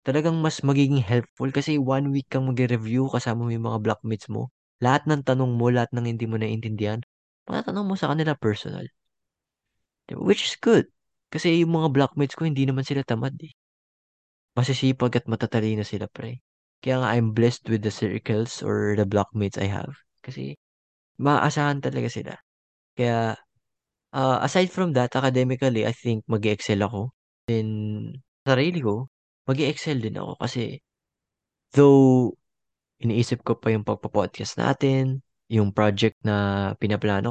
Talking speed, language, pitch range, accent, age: 150 wpm, Filipino, 105-135 Hz, native, 20-39